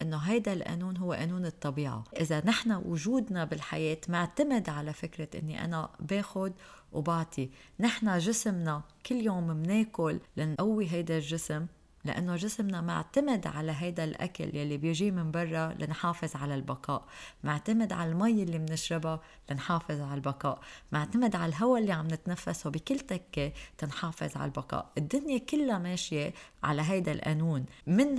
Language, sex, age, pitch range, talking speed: Arabic, female, 20-39, 165-210 Hz, 135 wpm